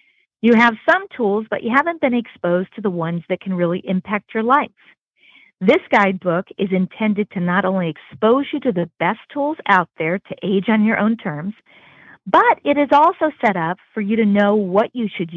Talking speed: 205 wpm